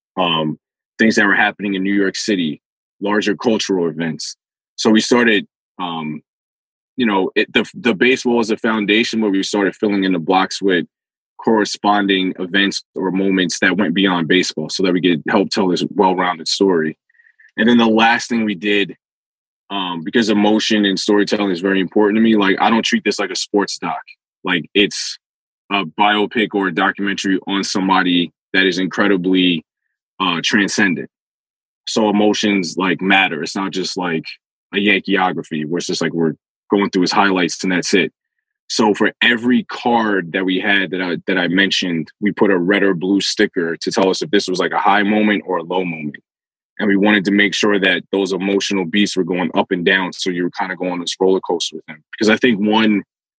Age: 20-39